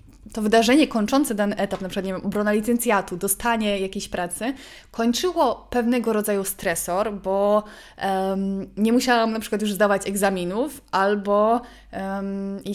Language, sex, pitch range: Polish, female, 195-250 Hz